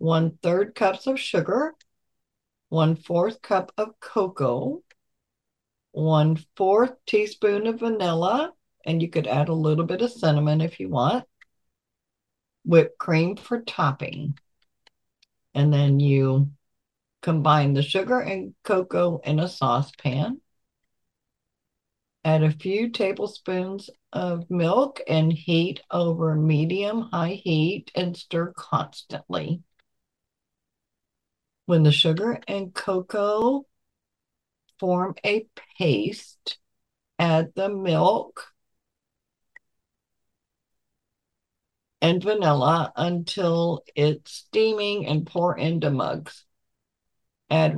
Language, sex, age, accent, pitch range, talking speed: English, female, 50-69, American, 150-195 Hz, 100 wpm